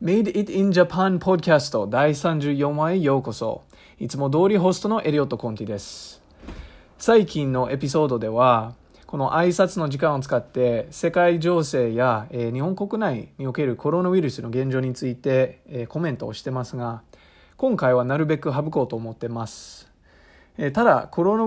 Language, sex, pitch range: English, male, 115-160 Hz